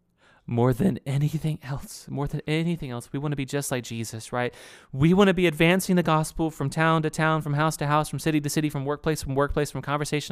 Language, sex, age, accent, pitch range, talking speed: English, male, 30-49, American, 120-165 Hz, 240 wpm